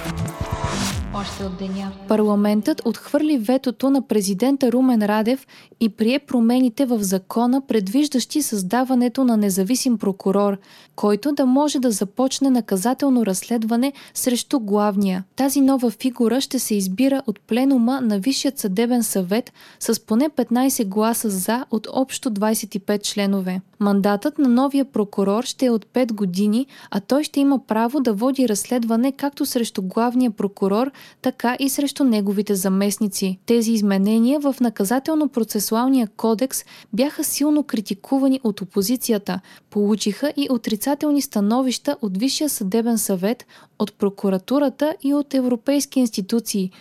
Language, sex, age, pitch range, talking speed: Bulgarian, female, 20-39, 210-265 Hz, 125 wpm